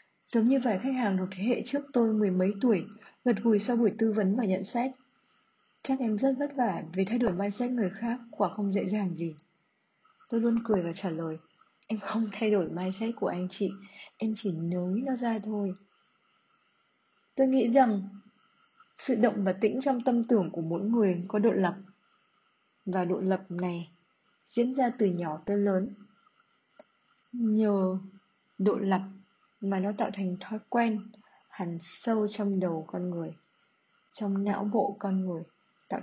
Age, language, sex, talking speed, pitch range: 20-39, Vietnamese, female, 180 wpm, 190-230 Hz